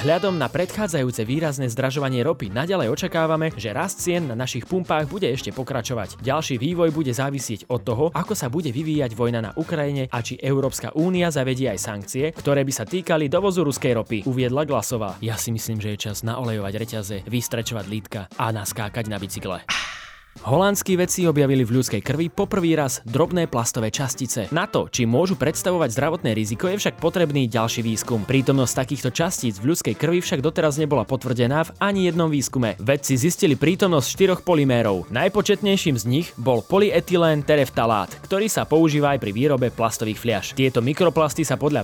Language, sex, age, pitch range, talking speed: Slovak, male, 20-39, 120-165 Hz, 170 wpm